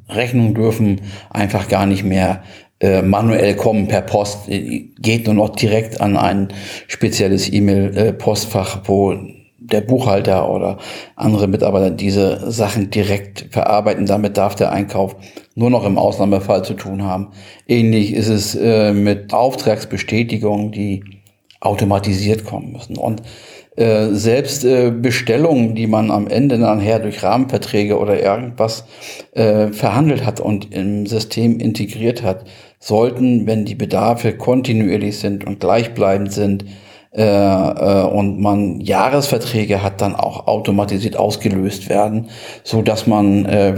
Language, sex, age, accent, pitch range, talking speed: German, male, 50-69, German, 100-110 Hz, 130 wpm